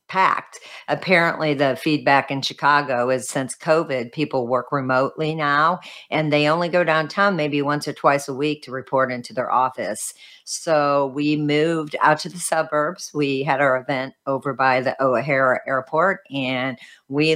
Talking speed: 165 wpm